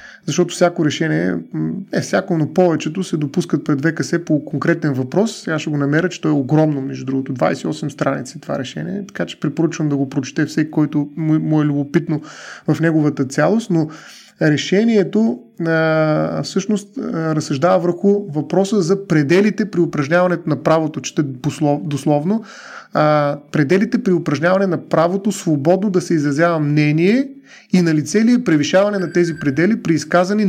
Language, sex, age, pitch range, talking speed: Bulgarian, male, 30-49, 150-190 Hz, 150 wpm